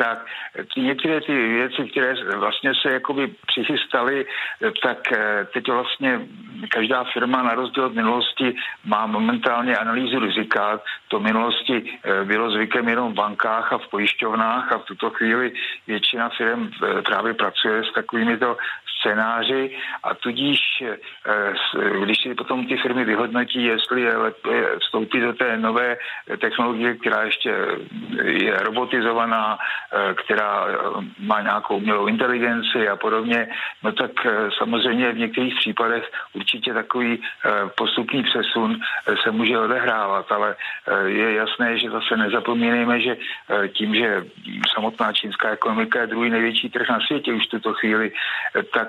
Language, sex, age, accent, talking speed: Czech, male, 50-69, native, 130 wpm